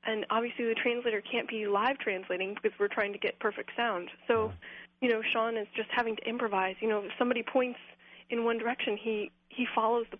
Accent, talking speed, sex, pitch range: American, 210 wpm, female, 205-245 Hz